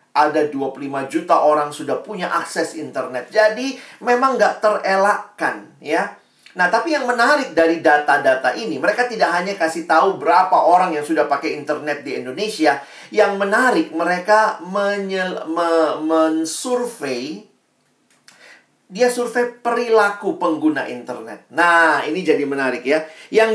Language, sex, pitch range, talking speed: Indonesian, male, 155-220 Hz, 125 wpm